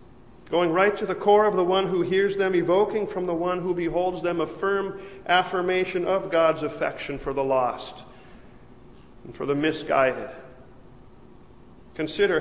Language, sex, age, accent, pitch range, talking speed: English, male, 40-59, American, 150-180 Hz, 155 wpm